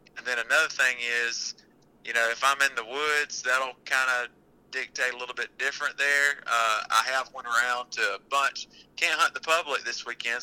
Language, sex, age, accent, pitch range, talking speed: English, male, 30-49, American, 110-125 Hz, 200 wpm